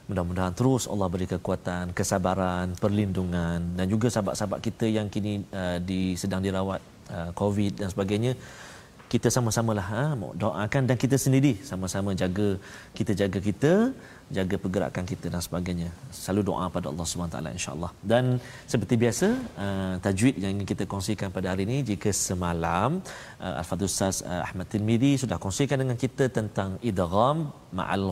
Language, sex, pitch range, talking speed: Malayalam, male, 95-120 Hz, 155 wpm